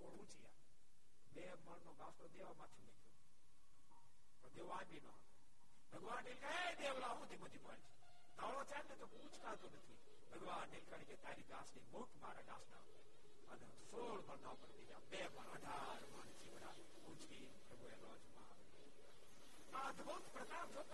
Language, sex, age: Gujarati, male, 60-79